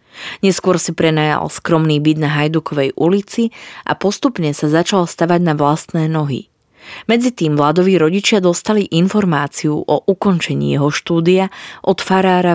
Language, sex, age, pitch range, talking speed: Slovak, female, 30-49, 150-190 Hz, 130 wpm